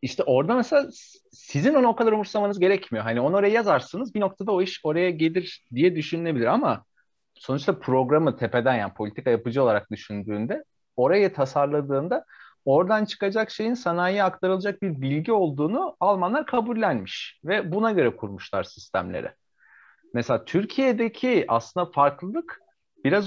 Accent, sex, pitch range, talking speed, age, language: native, male, 125-195 Hz, 135 wpm, 40-59, Turkish